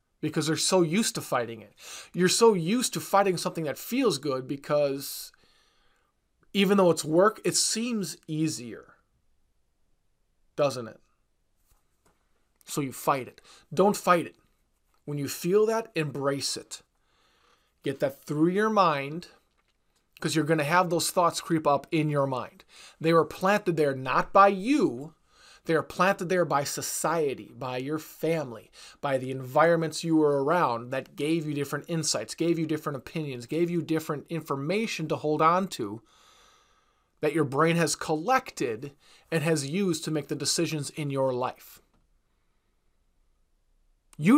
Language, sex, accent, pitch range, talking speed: English, male, American, 140-185 Hz, 150 wpm